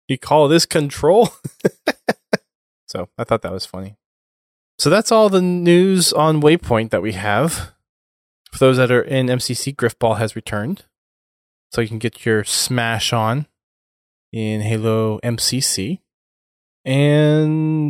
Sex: male